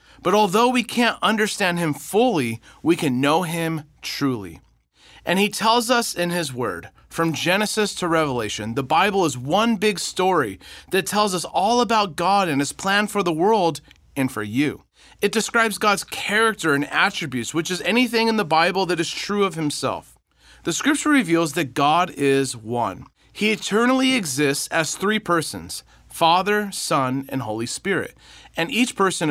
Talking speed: 165 wpm